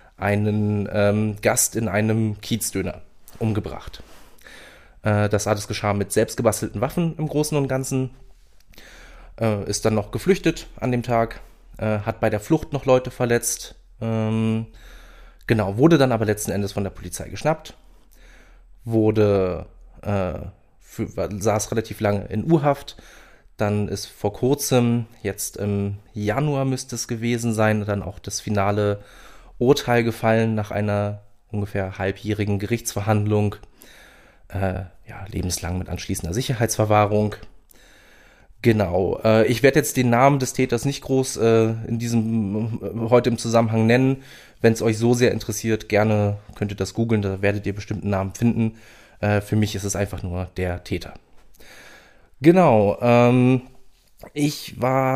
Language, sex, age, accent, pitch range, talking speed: German, male, 20-39, German, 100-120 Hz, 140 wpm